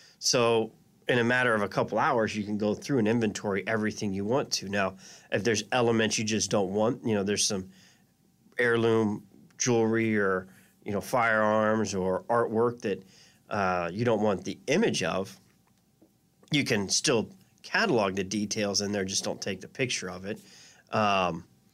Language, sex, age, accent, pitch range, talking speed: English, male, 30-49, American, 100-120 Hz, 170 wpm